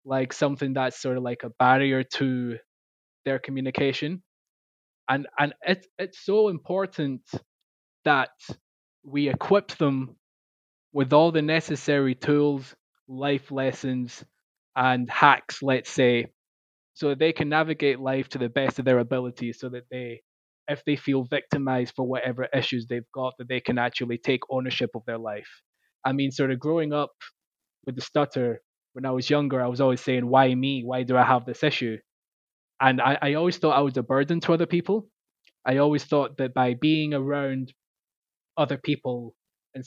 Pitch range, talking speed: 125-150 Hz, 165 wpm